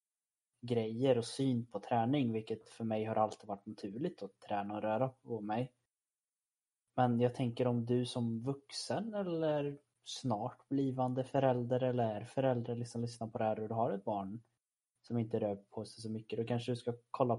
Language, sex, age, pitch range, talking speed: Swedish, male, 20-39, 110-125 Hz, 185 wpm